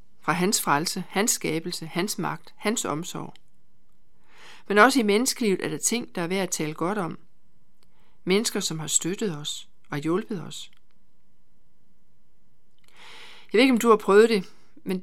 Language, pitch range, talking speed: Danish, 170-215 Hz, 160 wpm